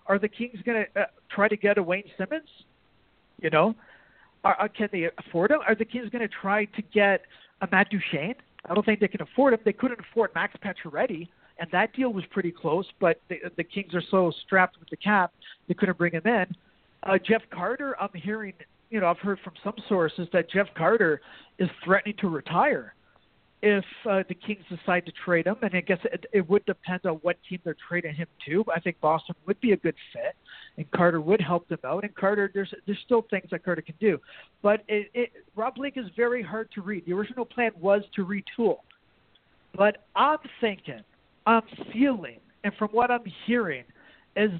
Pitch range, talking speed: 180-225 Hz, 210 wpm